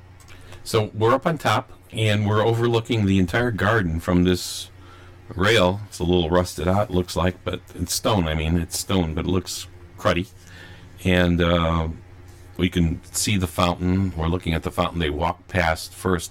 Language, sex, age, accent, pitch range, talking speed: English, male, 50-69, American, 90-95 Hz, 180 wpm